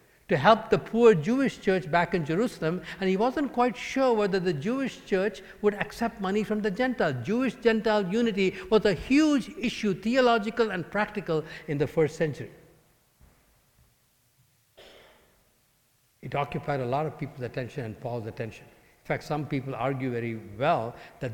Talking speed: 155 wpm